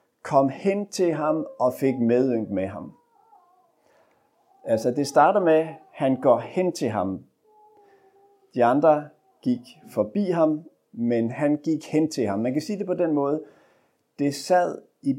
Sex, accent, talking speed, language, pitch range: male, native, 160 wpm, Danish, 125-180 Hz